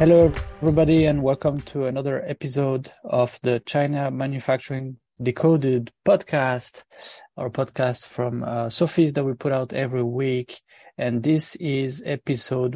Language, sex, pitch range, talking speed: English, male, 125-145 Hz, 130 wpm